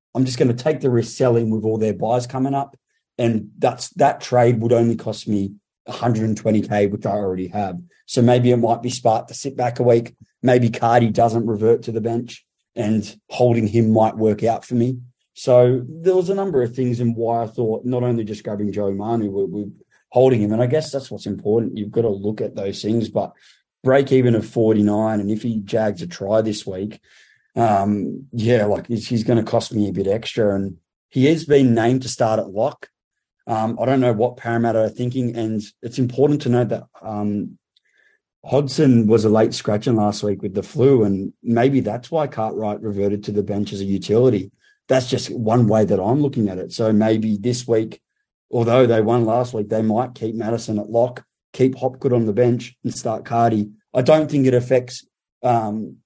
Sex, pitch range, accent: male, 110-125 Hz, Australian